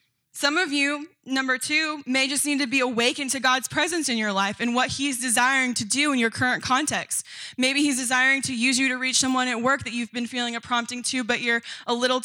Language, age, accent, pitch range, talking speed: English, 10-29, American, 230-265 Hz, 240 wpm